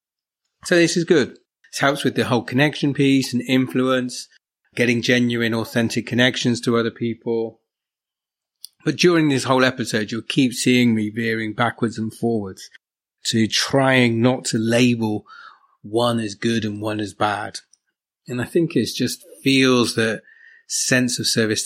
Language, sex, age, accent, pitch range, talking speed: English, male, 30-49, British, 110-130 Hz, 150 wpm